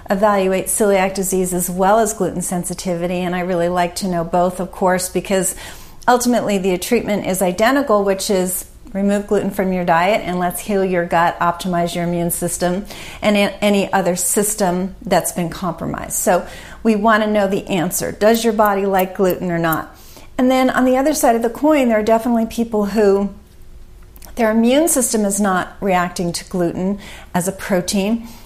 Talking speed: 180 wpm